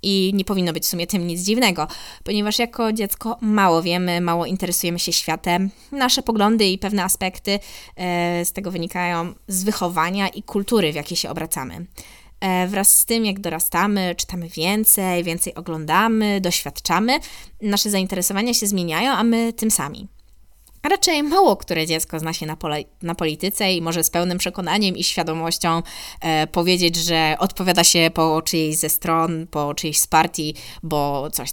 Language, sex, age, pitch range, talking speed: Polish, female, 20-39, 170-205 Hz, 160 wpm